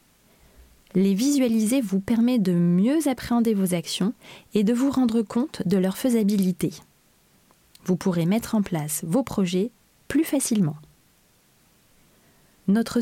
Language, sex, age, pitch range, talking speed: French, female, 20-39, 185-240 Hz, 125 wpm